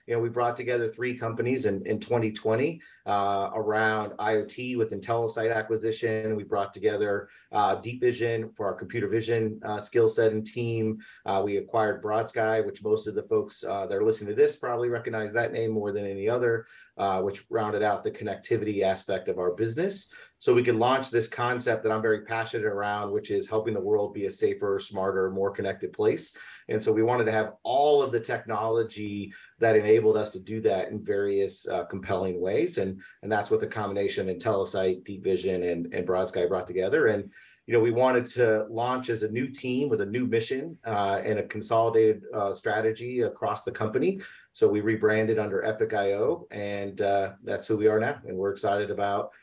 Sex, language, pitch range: male, English, 105-125 Hz